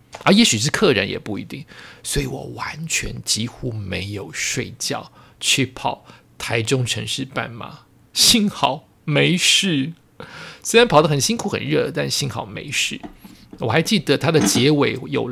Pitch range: 130-190 Hz